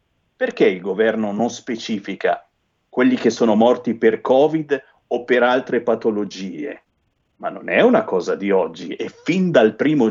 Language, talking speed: Italian, 155 wpm